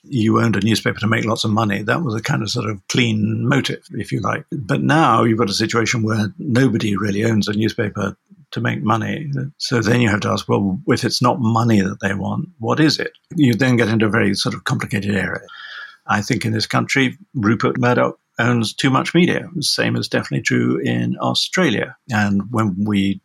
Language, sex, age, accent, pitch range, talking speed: English, male, 50-69, British, 105-125 Hz, 215 wpm